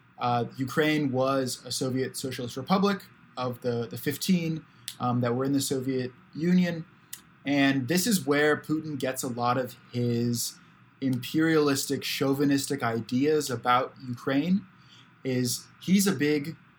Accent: American